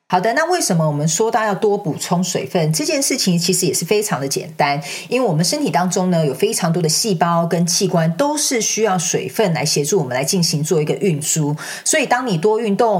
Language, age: Chinese, 40-59